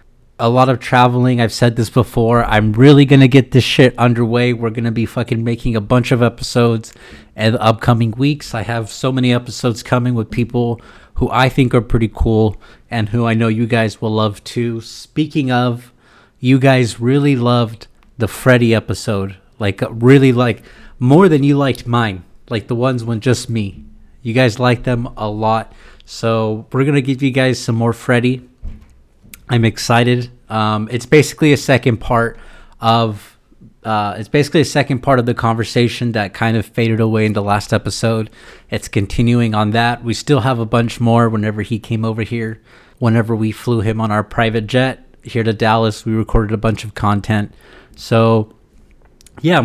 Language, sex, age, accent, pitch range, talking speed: English, male, 30-49, American, 110-125 Hz, 185 wpm